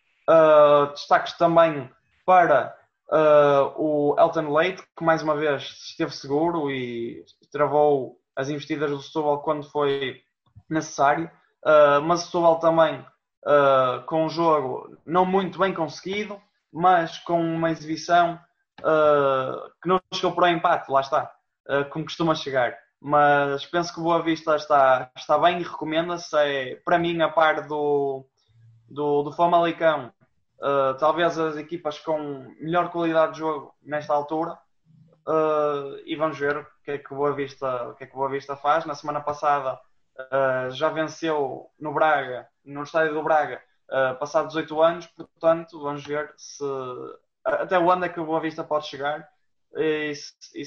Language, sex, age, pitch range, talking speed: Portuguese, male, 20-39, 145-165 Hz, 155 wpm